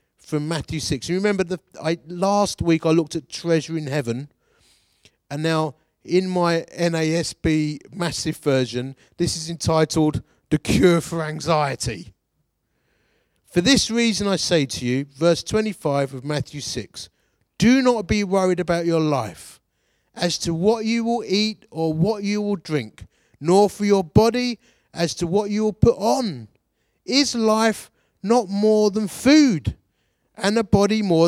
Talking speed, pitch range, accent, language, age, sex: 155 wpm, 145-210 Hz, British, English, 30-49, male